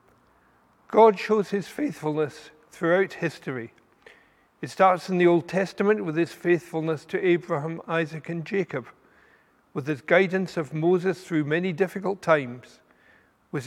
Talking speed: 130 wpm